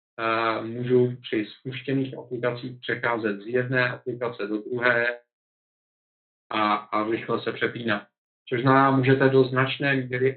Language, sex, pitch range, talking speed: Czech, male, 115-130 Hz, 115 wpm